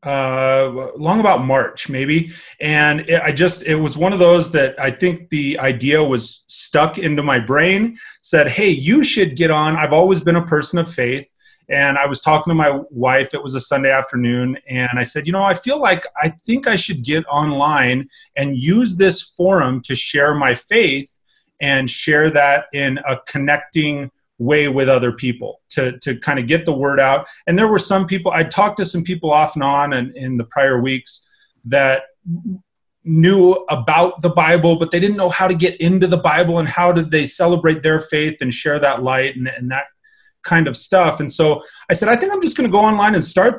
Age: 30-49